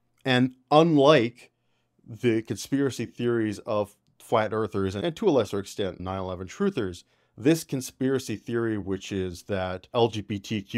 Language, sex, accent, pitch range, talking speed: English, male, American, 95-120 Hz, 120 wpm